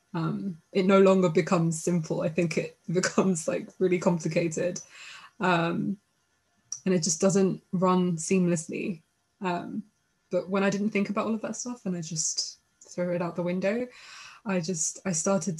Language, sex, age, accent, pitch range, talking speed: English, female, 20-39, British, 175-195 Hz, 165 wpm